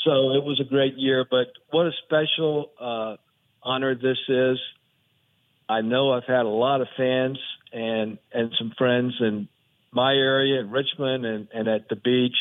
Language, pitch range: English, 115-130 Hz